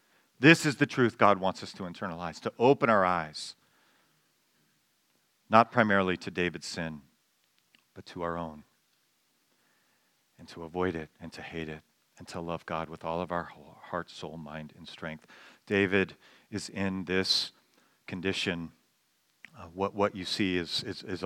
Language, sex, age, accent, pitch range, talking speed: English, male, 40-59, American, 90-145 Hz, 150 wpm